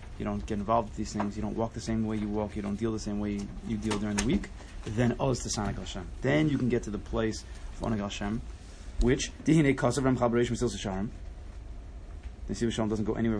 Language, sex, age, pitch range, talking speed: English, male, 20-39, 95-115 Hz, 230 wpm